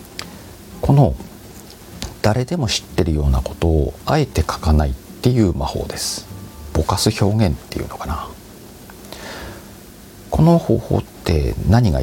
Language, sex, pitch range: Japanese, male, 75-105 Hz